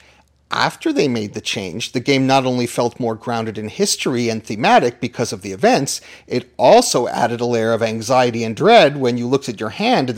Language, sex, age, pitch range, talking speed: English, male, 40-59, 120-150 Hz, 210 wpm